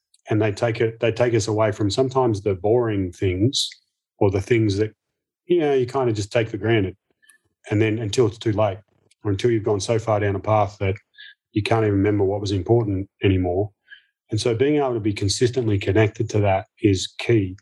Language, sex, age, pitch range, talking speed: English, male, 30-49, 100-120 Hz, 210 wpm